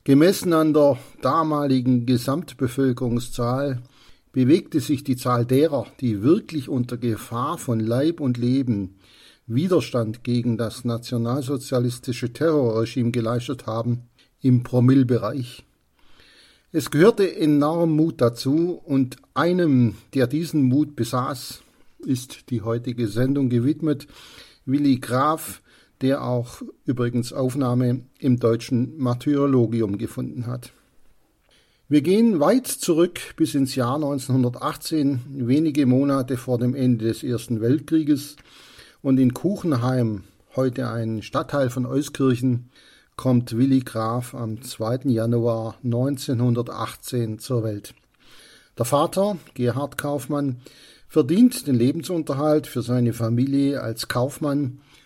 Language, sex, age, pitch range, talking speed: German, male, 50-69, 120-145 Hz, 110 wpm